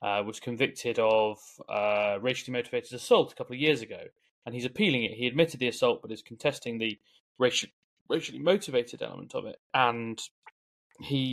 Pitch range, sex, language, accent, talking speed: 110-135 Hz, male, English, British, 175 wpm